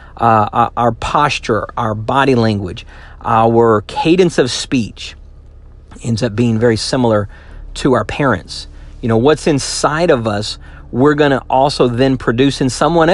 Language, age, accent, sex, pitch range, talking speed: English, 50-69, American, male, 105-170 Hz, 145 wpm